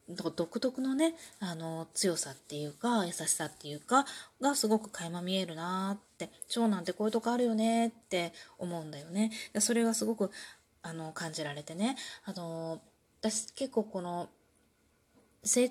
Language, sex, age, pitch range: Japanese, female, 20-39, 175-245 Hz